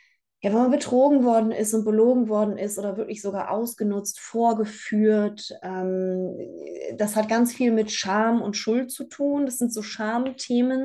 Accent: German